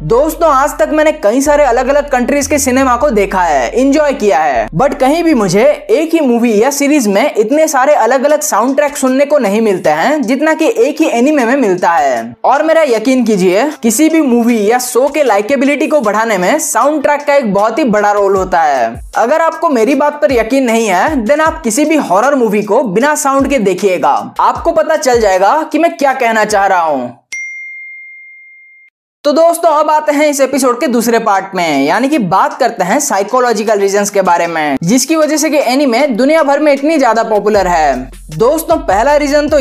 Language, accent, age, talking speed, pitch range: Hindi, native, 20-39, 210 wpm, 215-310 Hz